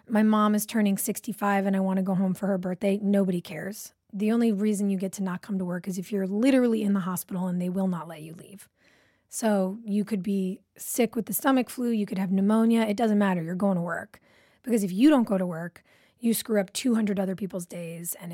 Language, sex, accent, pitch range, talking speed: English, female, American, 195-230 Hz, 245 wpm